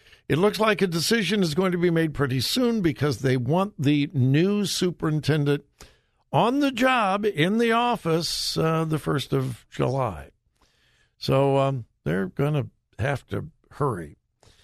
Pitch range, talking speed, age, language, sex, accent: 135-195 Hz, 150 wpm, 60-79, English, male, American